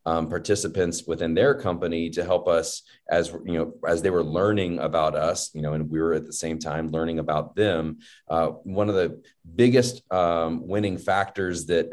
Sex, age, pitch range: male, 30-49, 80-95 Hz